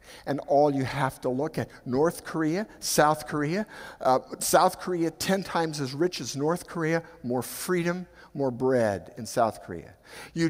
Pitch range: 115-160 Hz